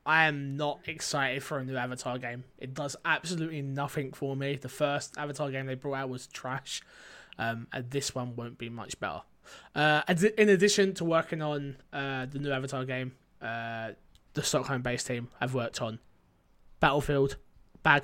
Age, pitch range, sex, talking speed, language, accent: 20-39, 130-175 Hz, male, 170 wpm, English, British